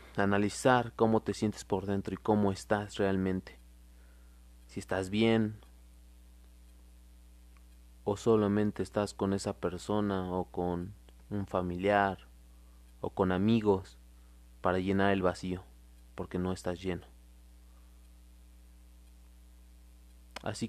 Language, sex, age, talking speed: Spanish, male, 30-49, 100 wpm